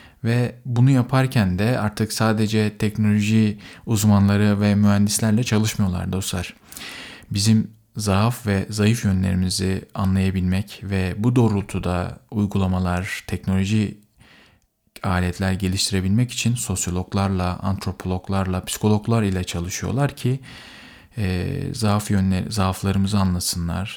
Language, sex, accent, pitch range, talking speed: Turkish, male, native, 95-115 Hz, 95 wpm